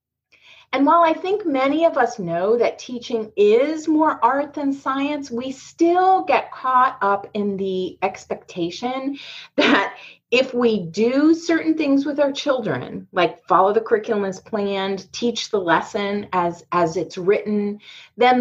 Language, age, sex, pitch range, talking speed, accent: English, 30-49, female, 195-280 Hz, 150 wpm, American